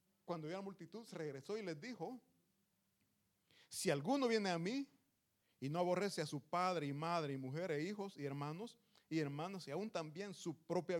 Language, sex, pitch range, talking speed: Italian, male, 135-200 Hz, 185 wpm